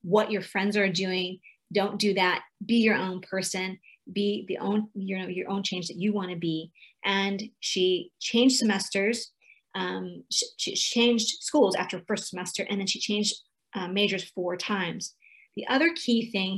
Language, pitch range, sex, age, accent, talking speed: English, 185-220 Hz, female, 30-49, American, 175 wpm